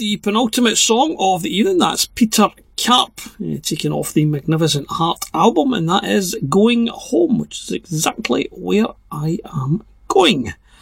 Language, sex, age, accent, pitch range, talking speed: English, male, 40-59, British, 150-195 Hz, 155 wpm